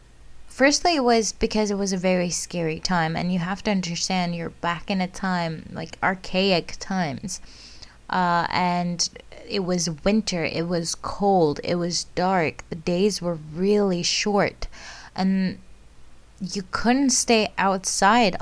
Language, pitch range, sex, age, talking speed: English, 170-205 Hz, female, 20-39, 145 wpm